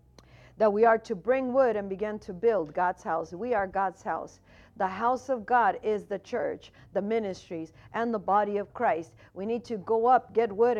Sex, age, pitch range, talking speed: female, 50-69, 195-240 Hz, 205 wpm